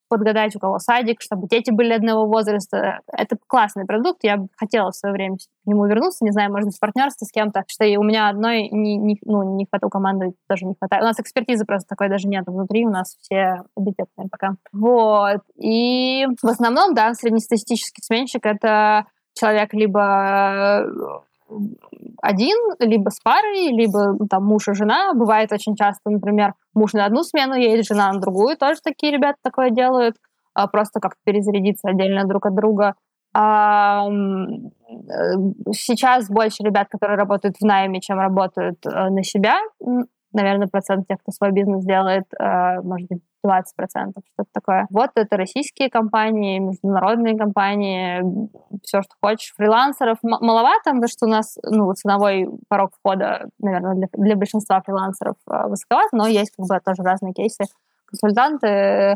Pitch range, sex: 195-230 Hz, female